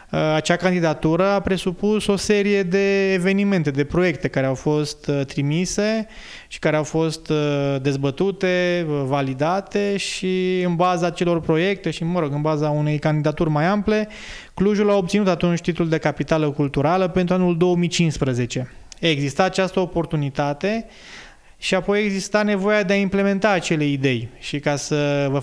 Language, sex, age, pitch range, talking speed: Romanian, male, 20-39, 150-190 Hz, 145 wpm